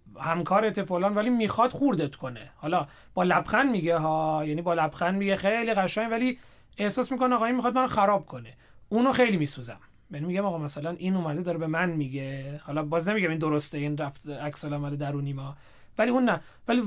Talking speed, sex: 190 wpm, male